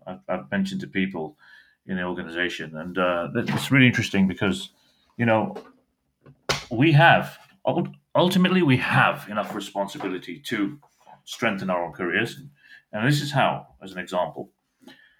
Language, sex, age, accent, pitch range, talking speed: English, male, 30-49, British, 90-140 Hz, 135 wpm